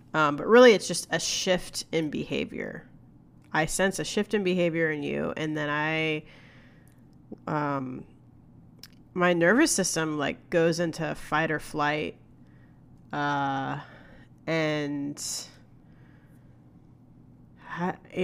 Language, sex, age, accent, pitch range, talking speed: English, female, 30-49, American, 145-165 Hz, 110 wpm